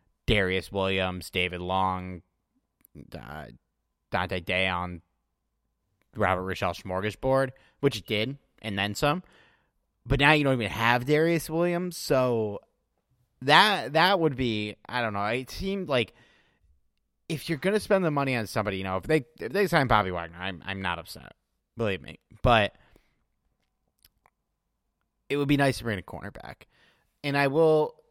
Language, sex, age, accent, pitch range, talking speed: English, male, 30-49, American, 95-135 Hz, 155 wpm